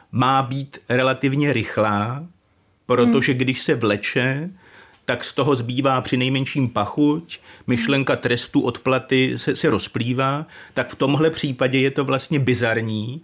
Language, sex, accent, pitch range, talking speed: Czech, male, native, 120-140 Hz, 135 wpm